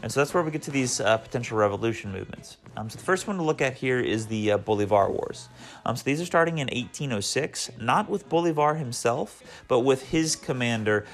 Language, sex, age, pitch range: English, male, 30-49, 110-140 Hz